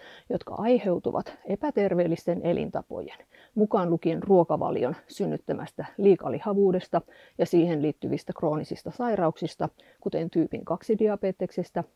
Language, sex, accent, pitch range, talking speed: Finnish, female, native, 175-230 Hz, 85 wpm